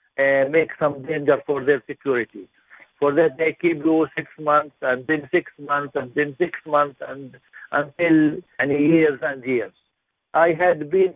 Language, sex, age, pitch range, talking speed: English, male, 60-79, 145-165 Hz, 165 wpm